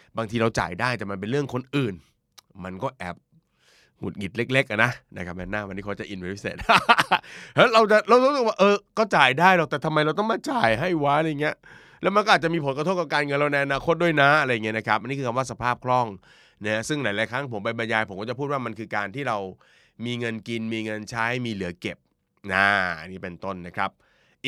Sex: male